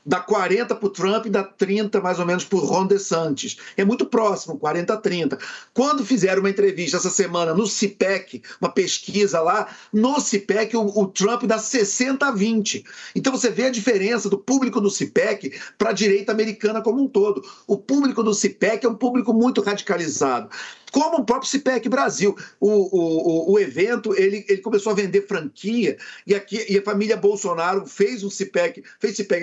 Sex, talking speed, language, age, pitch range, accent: male, 190 wpm, Portuguese, 50-69, 190-230 Hz, Brazilian